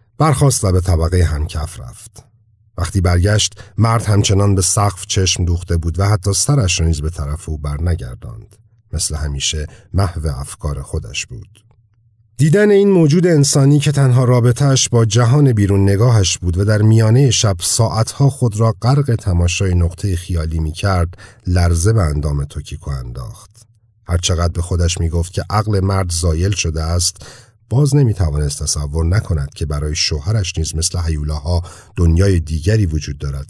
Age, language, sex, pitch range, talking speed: 40-59, Persian, male, 80-110 Hz, 150 wpm